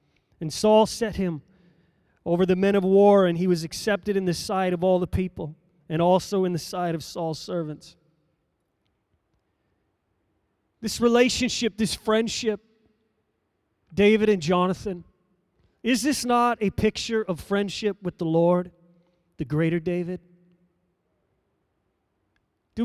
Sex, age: male, 30-49